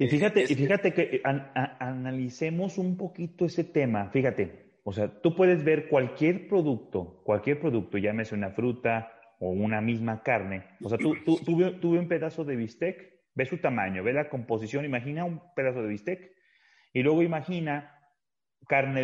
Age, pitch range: 30-49, 110-145 Hz